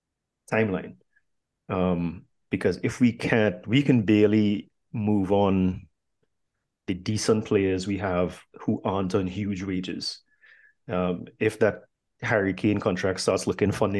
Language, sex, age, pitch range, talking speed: English, male, 30-49, 90-105 Hz, 130 wpm